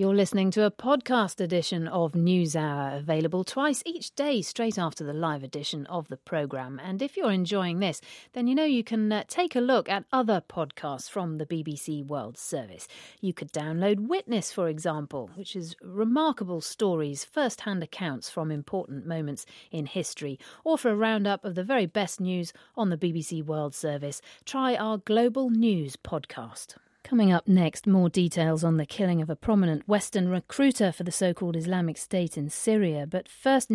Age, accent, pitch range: 40-59, British, 160-225 Hz